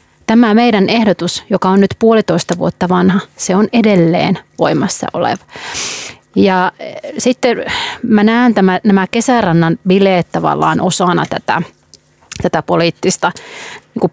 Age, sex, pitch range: 30-49, female, 175-235 Hz